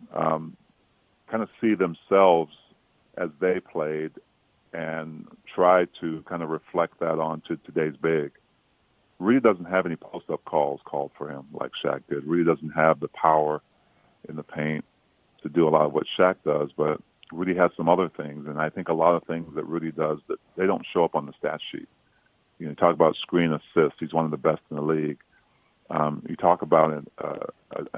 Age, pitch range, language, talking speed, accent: 40-59, 75-85 Hz, English, 195 wpm, American